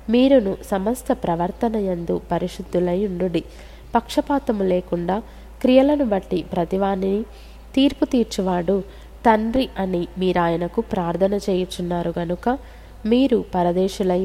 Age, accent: 20-39, native